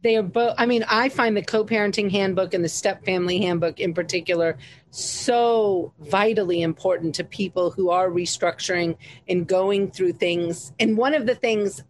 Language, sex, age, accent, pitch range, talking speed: English, female, 40-59, American, 185-235 Hz, 175 wpm